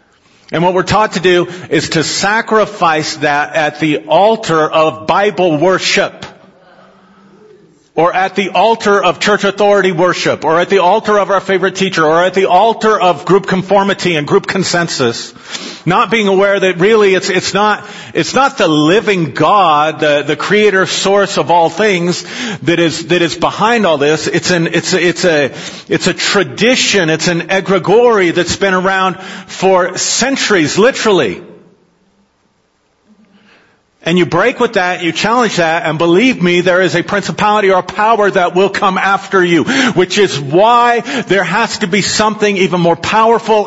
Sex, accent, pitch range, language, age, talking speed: male, American, 175-215 Hz, English, 50-69, 165 wpm